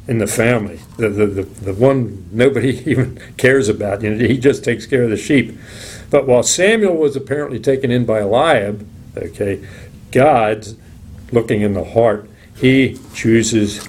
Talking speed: 165 wpm